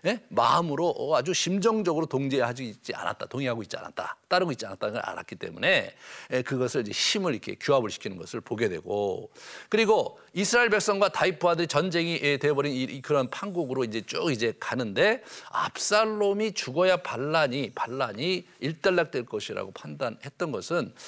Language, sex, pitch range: Korean, male, 150-205 Hz